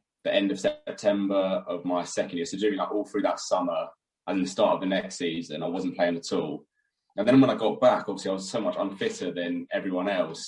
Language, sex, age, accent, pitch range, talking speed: English, male, 20-39, British, 95-140 Hz, 240 wpm